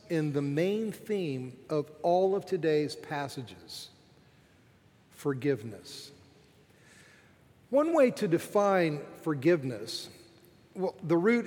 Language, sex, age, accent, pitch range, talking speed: English, male, 50-69, American, 150-205 Hz, 95 wpm